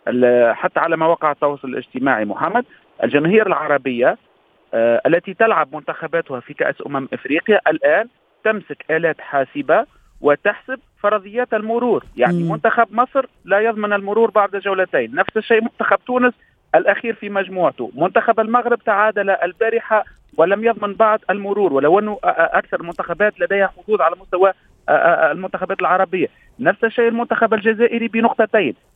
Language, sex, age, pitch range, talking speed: Arabic, male, 40-59, 175-230 Hz, 125 wpm